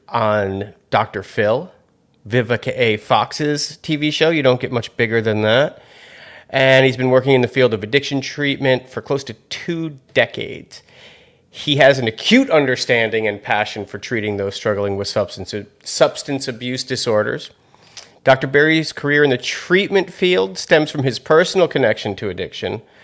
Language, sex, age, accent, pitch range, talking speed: English, male, 40-59, American, 105-135 Hz, 155 wpm